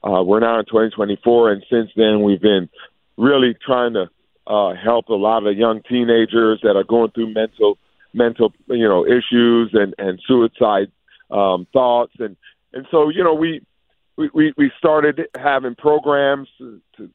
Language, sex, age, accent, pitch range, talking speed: English, male, 40-59, American, 110-135 Hz, 170 wpm